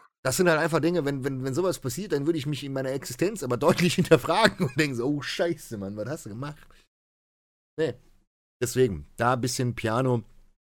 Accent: German